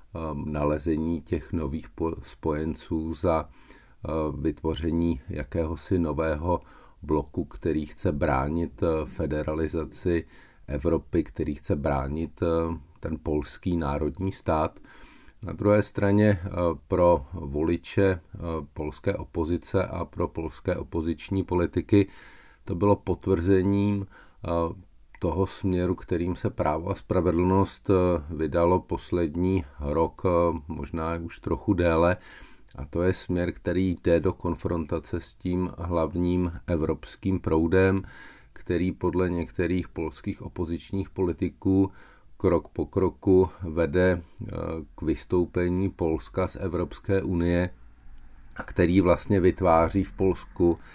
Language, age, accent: Czech, 50-69, native